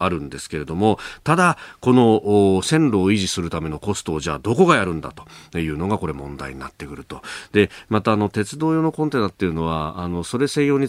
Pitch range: 80-115 Hz